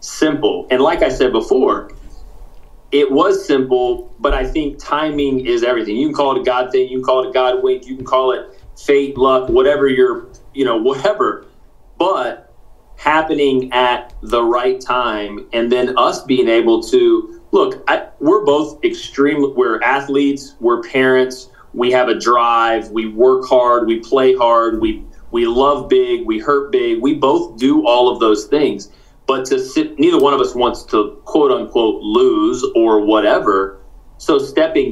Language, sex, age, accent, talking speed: English, male, 30-49, American, 175 wpm